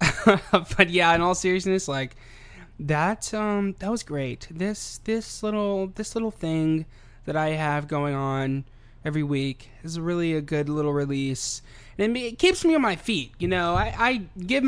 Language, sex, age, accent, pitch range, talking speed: English, male, 20-39, American, 140-200 Hz, 175 wpm